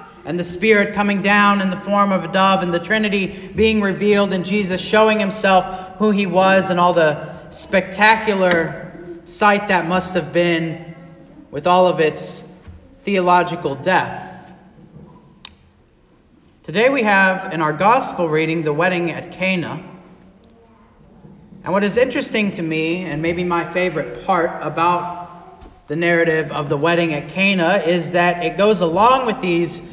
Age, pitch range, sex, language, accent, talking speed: 40-59, 165-190 Hz, male, English, American, 150 wpm